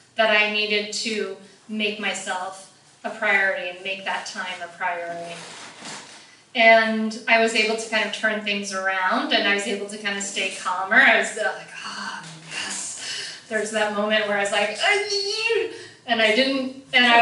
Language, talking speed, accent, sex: English, 175 wpm, American, female